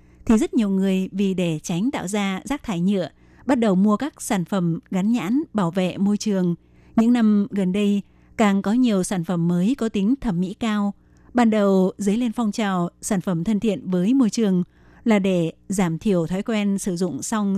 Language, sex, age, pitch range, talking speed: Vietnamese, female, 20-39, 190-235 Hz, 210 wpm